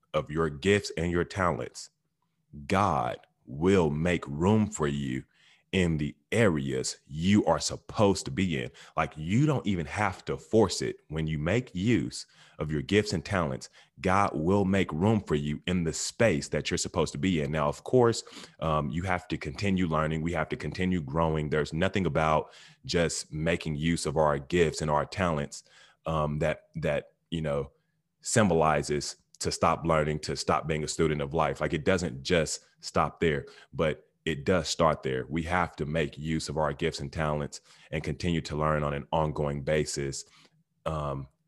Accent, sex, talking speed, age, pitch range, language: American, male, 180 wpm, 30-49, 75-85 Hz, English